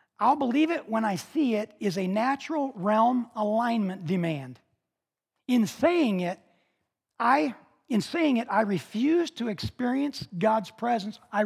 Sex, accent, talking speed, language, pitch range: male, American, 140 wpm, English, 190-250 Hz